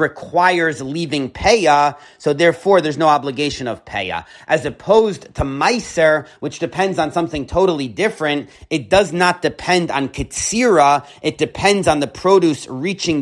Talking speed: 145 wpm